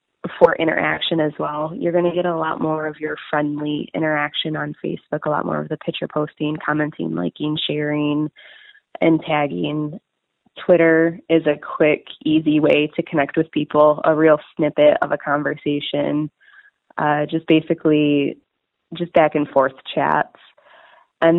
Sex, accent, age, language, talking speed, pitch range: female, American, 20-39, English, 150 wpm, 150-170 Hz